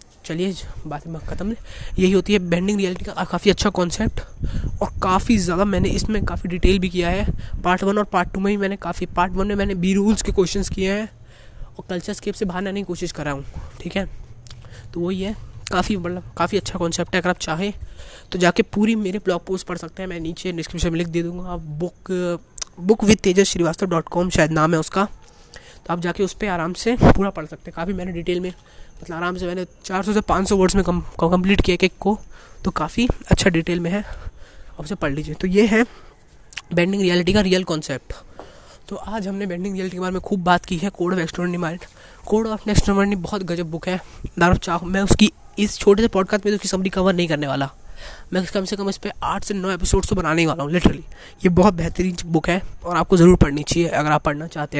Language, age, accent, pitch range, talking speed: Hindi, 20-39, native, 170-195 Hz, 225 wpm